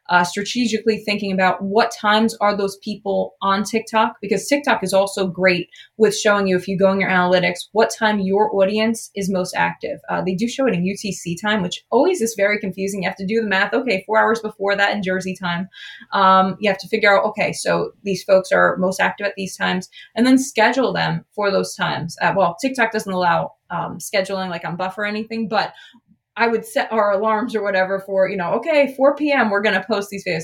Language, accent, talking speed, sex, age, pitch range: English, American, 225 wpm, female, 20-39, 185-220 Hz